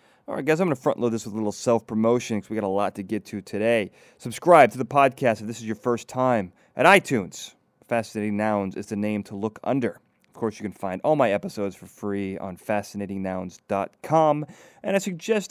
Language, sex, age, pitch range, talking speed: English, male, 30-49, 105-140 Hz, 220 wpm